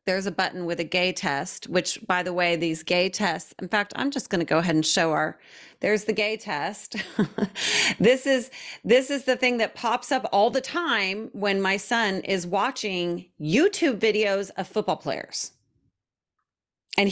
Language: English